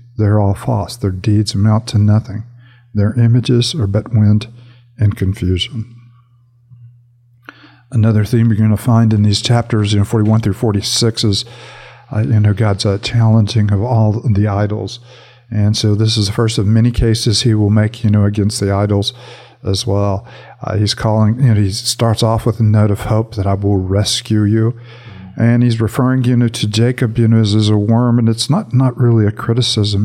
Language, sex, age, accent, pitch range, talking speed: English, male, 50-69, American, 105-120 Hz, 195 wpm